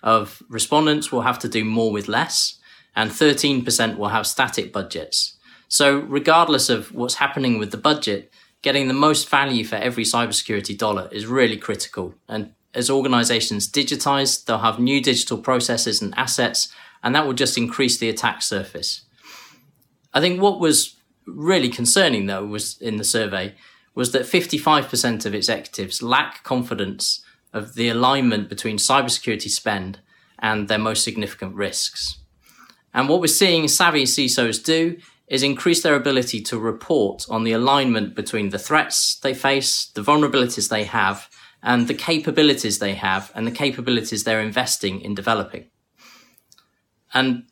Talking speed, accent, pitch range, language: 150 wpm, British, 110-140 Hz, English